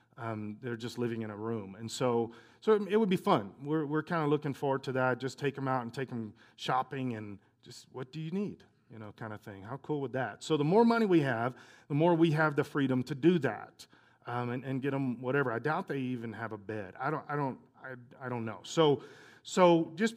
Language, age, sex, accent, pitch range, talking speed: English, 40-59, male, American, 120-160 Hz, 255 wpm